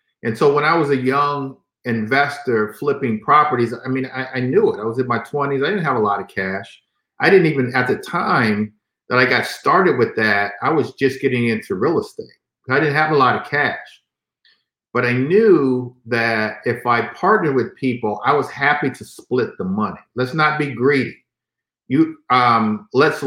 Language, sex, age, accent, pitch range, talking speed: English, male, 50-69, American, 120-150 Hz, 200 wpm